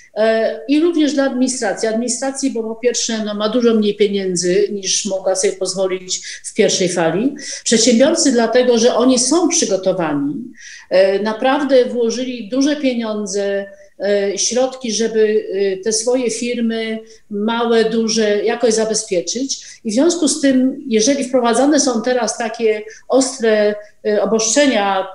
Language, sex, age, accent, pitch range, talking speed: Polish, female, 50-69, native, 210-255 Hz, 125 wpm